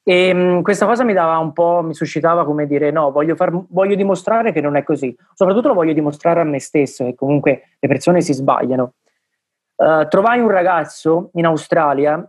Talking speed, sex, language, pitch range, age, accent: 195 wpm, male, Italian, 140-170 Hz, 20-39, native